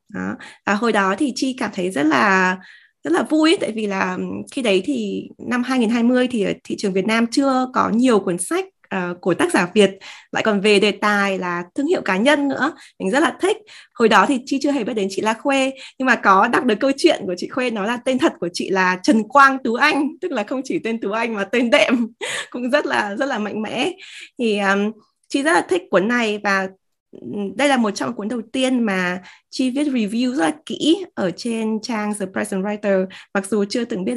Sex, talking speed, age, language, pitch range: female, 235 wpm, 20-39, Vietnamese, 200-265 Hz